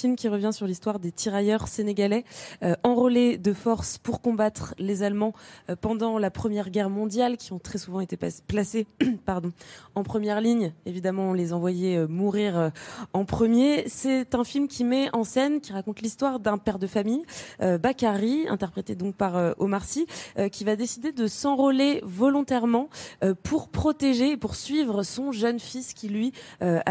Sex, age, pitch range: female, 20-39, 190-235 Hz